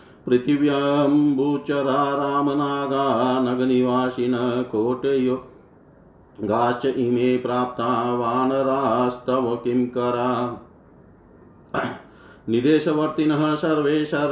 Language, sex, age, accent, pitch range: Hindi, male, 50-69, native, 125-135 Hz